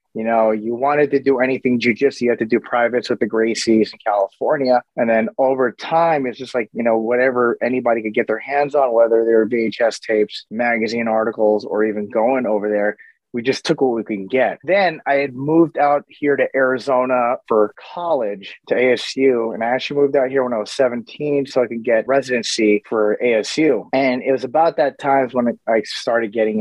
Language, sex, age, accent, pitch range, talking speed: English, male, 30-49, American, 115-140 Hz, 205 wpm